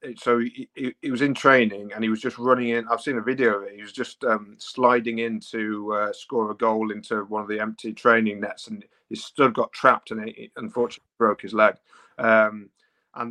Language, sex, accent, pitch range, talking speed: English, male, British, 105-115 Hz, 220 wpm